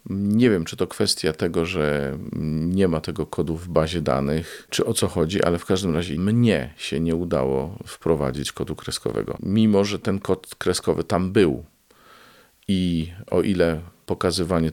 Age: 40-59